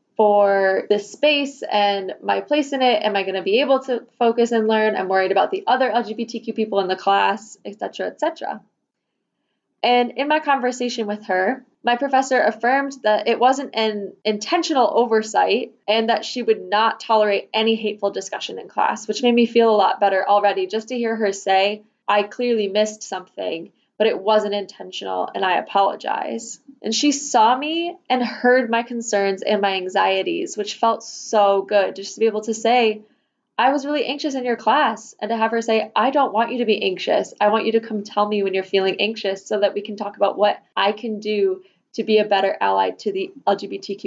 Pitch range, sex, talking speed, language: 205-245 Hz, female, 205 wpm, English